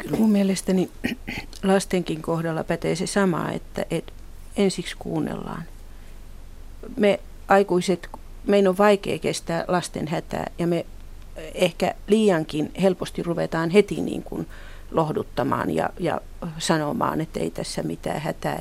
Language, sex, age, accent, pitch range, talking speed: Finnish, female, 40-59, native, 155-195 Hz, 120 wpm